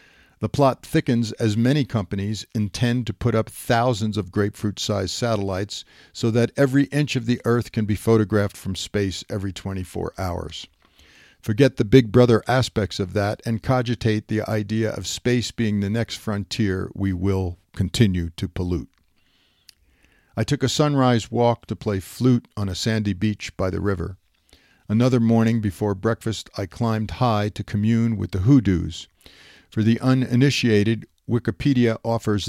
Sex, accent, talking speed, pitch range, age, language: male, American, 155 wpm, 95-120 Hz, 50-69, English